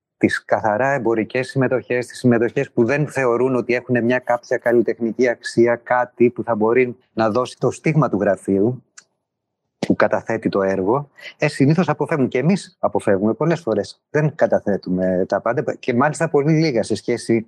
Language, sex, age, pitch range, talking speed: Greek, male, 30-49, 110-145 Hz, 160 wpm